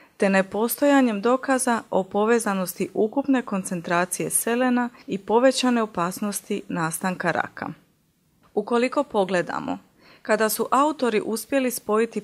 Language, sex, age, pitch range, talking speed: Croatian, female, 30-49, 180-240 Hz, 100 wpm